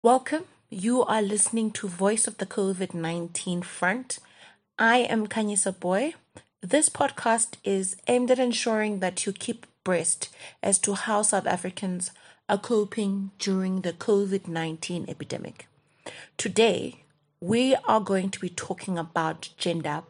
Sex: female